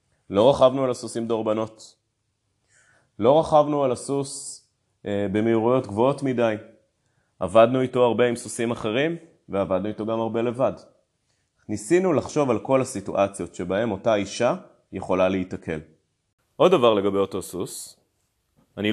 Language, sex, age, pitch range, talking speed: Hebrew, male, 30-49, 100-125 Hz, 125 wpm